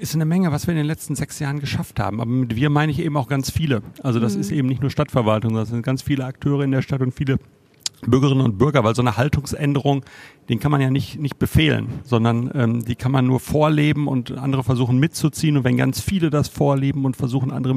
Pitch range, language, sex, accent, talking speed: 115-145 Hz, German, male, German, 245 wpm